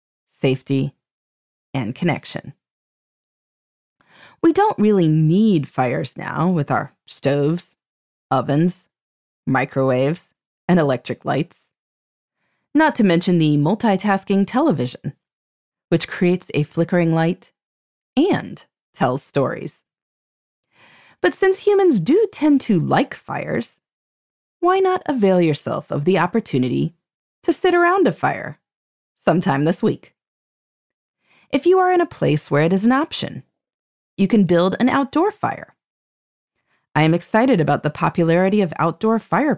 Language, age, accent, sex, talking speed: English, 20-39, American, female, 120 wpm